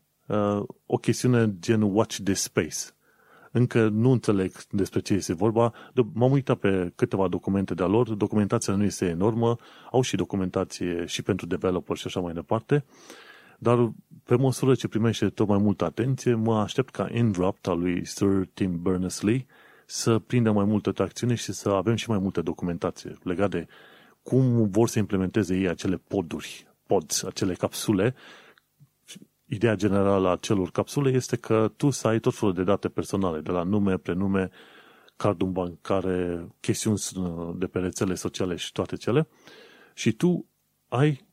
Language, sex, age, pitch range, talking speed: Romanian, male, 30-49, 95-115 Hz, 160 wpm